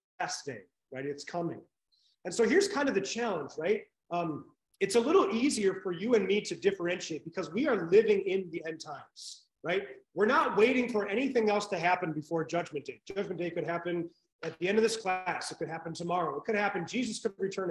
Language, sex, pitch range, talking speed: English, male, 175-245 Hz, 215 wpm